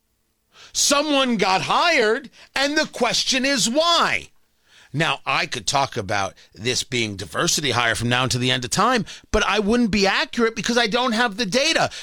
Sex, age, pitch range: male, 40-59, 225-285 Hz